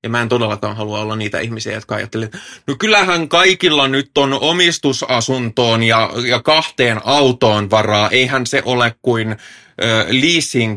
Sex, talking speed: male, 150 wpm